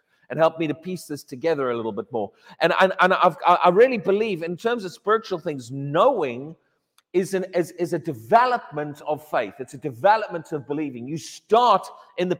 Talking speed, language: 200 wpm, English